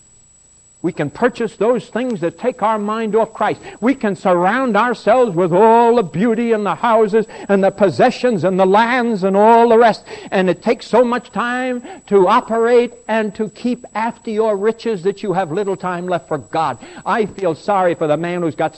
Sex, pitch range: male, 135-200 Hz